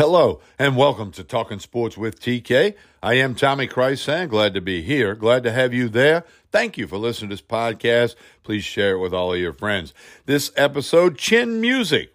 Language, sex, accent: English, male, American